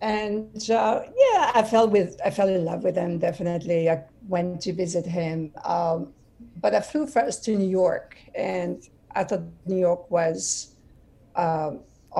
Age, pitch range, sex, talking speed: 50-69, 165-190 Hz, female, 160 wpm